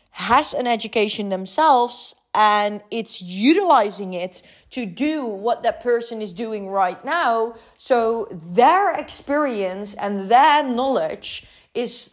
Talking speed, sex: 120 wpm, female